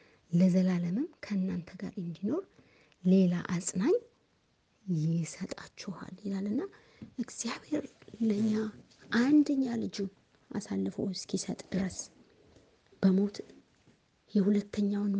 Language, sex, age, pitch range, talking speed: Amharic, female, 30-49, 195-235 Hz, 65 wpm